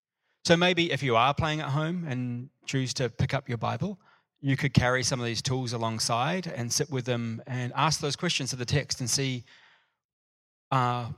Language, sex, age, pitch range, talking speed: English, male, 30-49, 120-150 Hz, 200 wpm